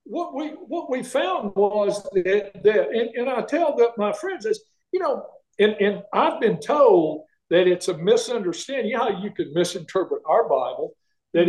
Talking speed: 190 wpm